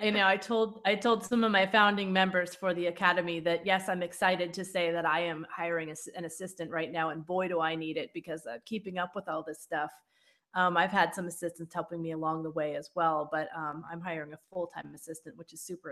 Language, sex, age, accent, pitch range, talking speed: English, female, 30-49, American, 175-225 Hz, 240 wpm